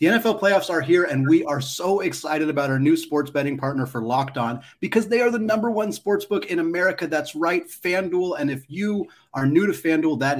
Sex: male